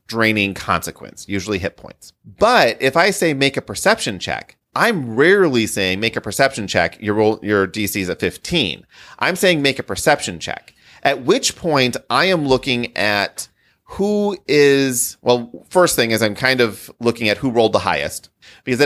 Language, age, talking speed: English, 30-49, 175 wpm